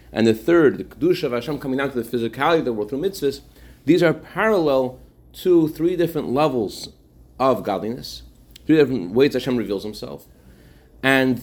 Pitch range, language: 115-145 Hz, English